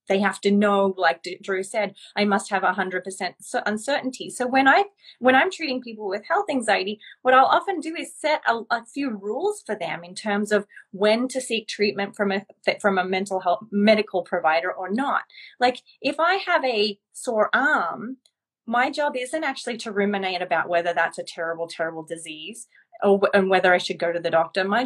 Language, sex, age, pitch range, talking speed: English, female, 30-49, 190-260 Hz, 200 wpm